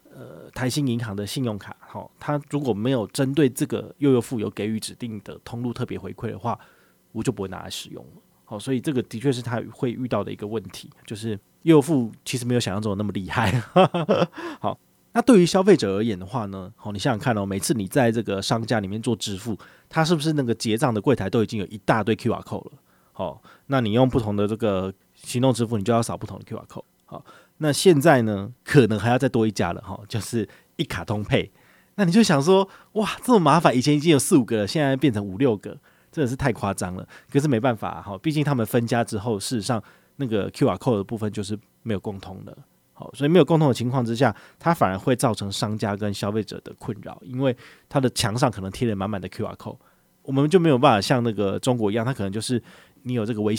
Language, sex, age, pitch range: Chinese, male, 20-39, 105-135 Hz